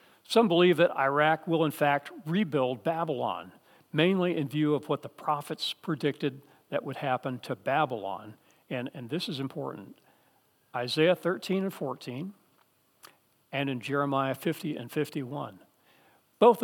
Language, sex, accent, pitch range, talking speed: English, male, American, 140-180 Hz, 135 wpm